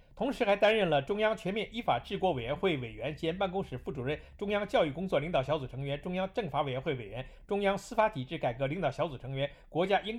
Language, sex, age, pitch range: Chinese, male, 50-69, 135-205 Hz